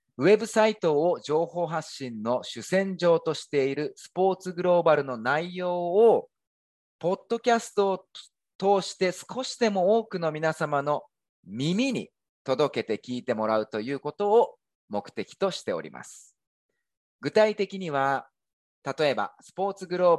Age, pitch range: 40-59, 125-185 Hz